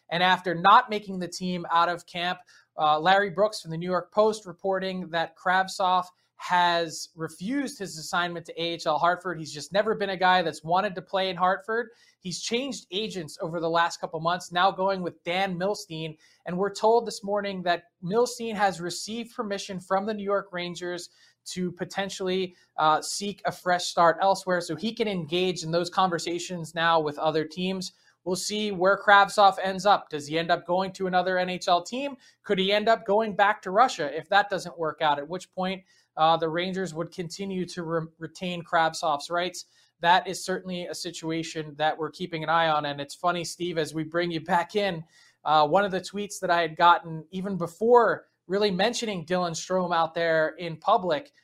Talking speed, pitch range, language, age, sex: 195 wpm, 165-195 Hz, English, 20-39, male